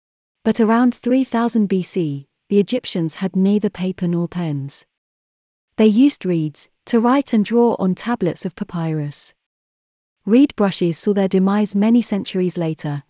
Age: 30-49